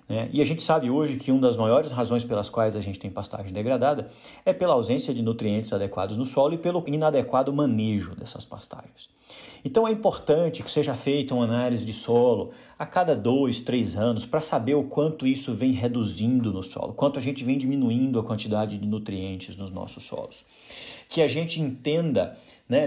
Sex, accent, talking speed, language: male, Brazilian, 190 wpm, Portuguese